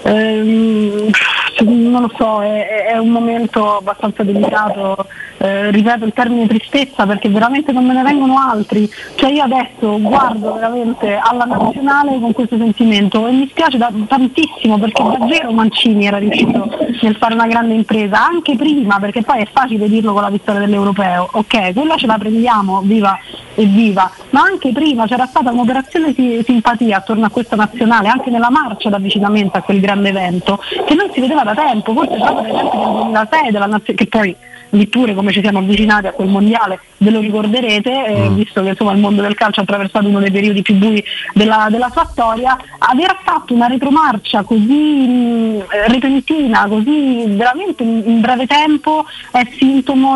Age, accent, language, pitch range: 20-39, native, Italian, 210-260 Hz